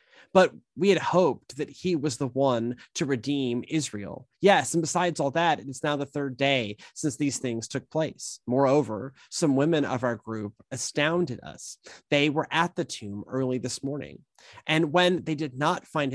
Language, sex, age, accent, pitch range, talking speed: English, male, 30-49, American, 125-155 Hz, 180 wpm